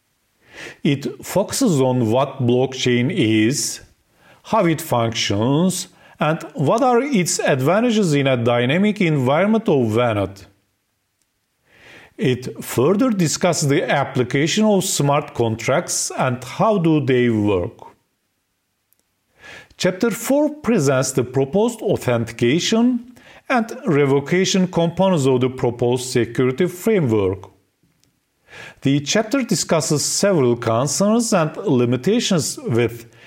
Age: 40-59